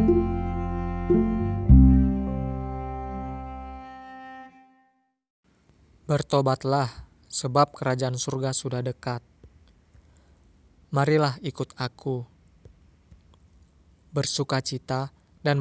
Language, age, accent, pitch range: Indonesian, 20-39, native, 95-135 Hz